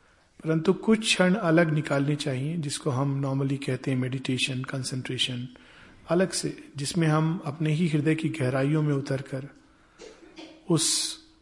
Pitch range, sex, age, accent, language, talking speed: 135-165 Hz, male, 50-69, native, Hindi, 130 wpm